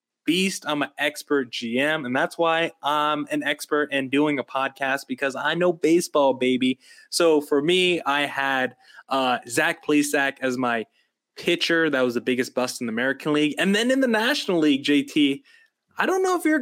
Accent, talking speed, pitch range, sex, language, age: American, 190 wpm, 135-180 Hz, male, English, 20-39